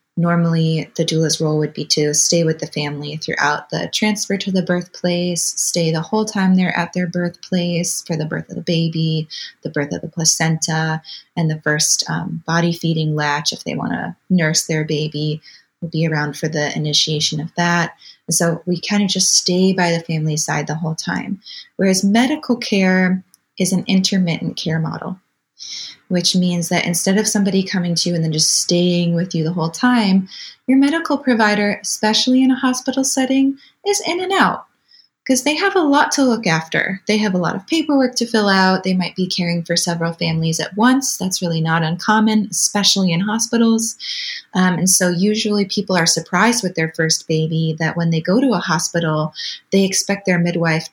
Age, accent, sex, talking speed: 20-39, American, female, 195 wpm